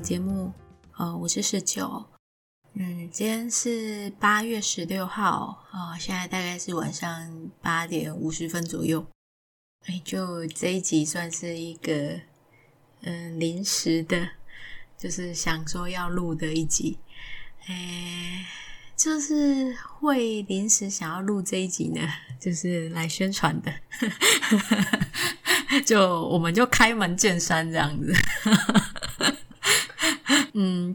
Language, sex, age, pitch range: Chinese, female, 20-39, 160-195 Hz